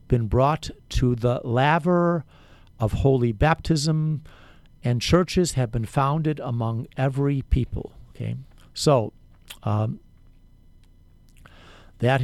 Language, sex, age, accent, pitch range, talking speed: English, male, 50-69, American, 110-145 Hz, 100 wpm